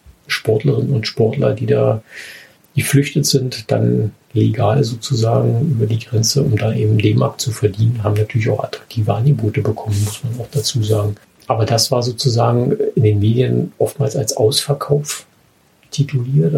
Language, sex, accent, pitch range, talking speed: German, male, German, 105-135 Hz, 150 wpm